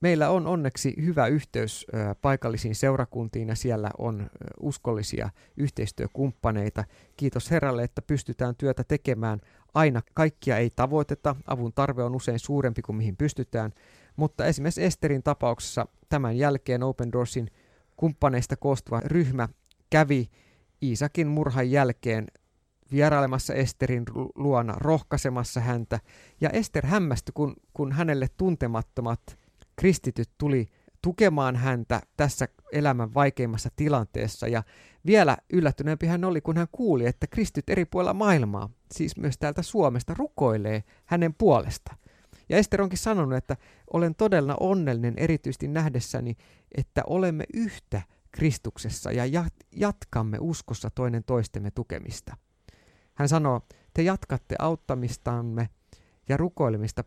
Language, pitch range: Finnish, 115-150 Hz